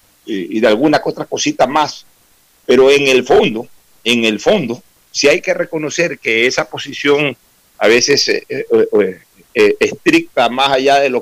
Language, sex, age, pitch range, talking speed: Spanish, male, 60-79, 120-180 Hz, 160 wpm